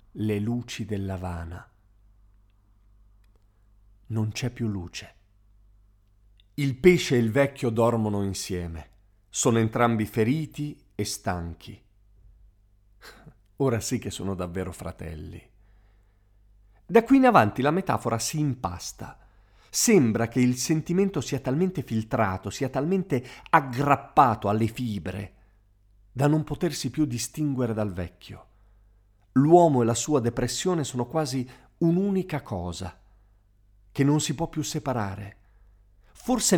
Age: 50-69